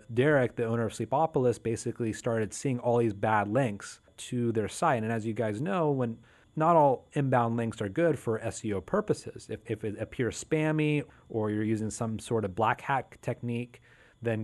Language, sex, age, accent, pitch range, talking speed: English, male, 30-49, American, 110-130 Hz, 185 wpm